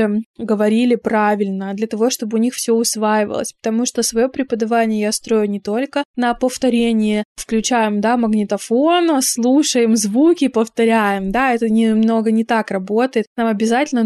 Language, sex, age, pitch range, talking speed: Russian, female, 20-39, 225-260 Hz, 140 wpm